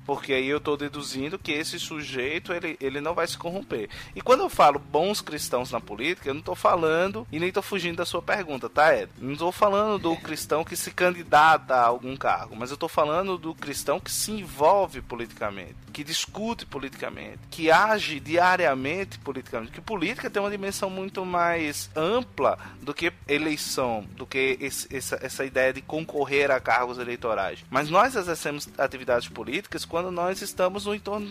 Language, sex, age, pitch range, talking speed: Portuguese, male, 20-39, 130-175 Hz, 180 wpm